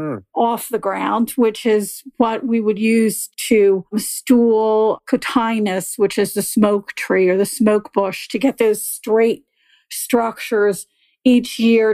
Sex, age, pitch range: female, 50-69, 215-270 Hz